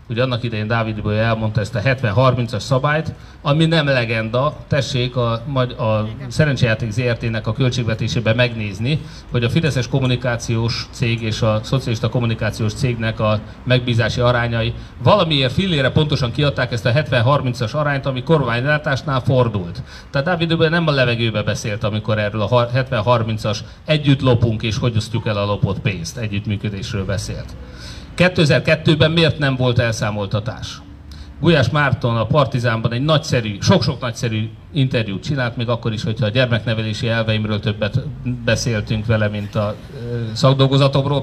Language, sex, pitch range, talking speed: Hungarian, male, 110-140 Hz, 135 wpm